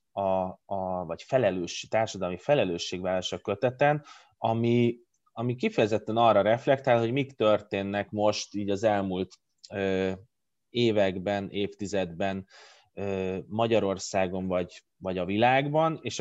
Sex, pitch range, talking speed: male, 100-120 Hz, 105 wpm